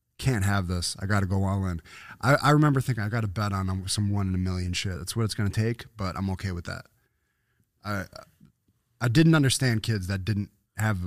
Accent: American